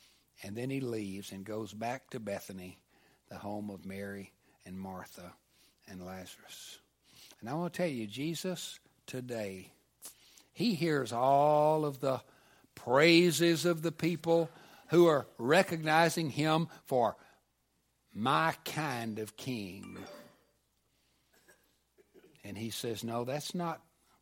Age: 60-79